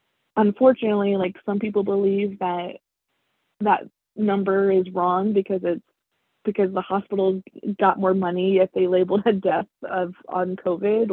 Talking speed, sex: 140 wpm, female